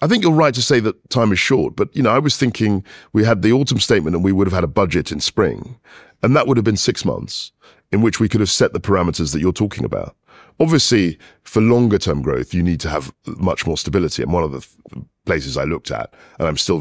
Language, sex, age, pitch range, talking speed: English, male, 40-59, 85-115 Hz, 255 wpm